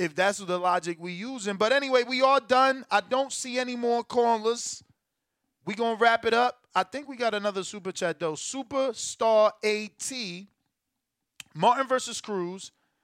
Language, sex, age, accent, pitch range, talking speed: English, male, 20-39, American, 160-210 Hz, 165 wpm